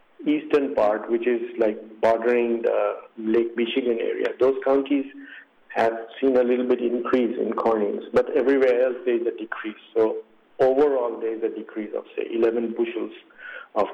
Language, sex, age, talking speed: English, male, 50-69, 165 wpm